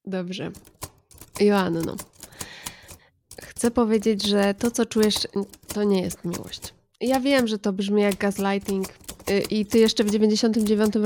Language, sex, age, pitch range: Polish, female, 20-39, 195-225 Hz